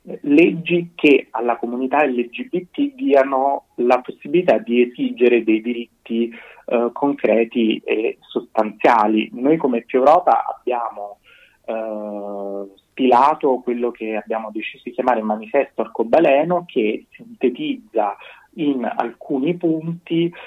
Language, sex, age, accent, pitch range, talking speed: Italian, male, 30-49, native, 115-140 Hz, 105 wpm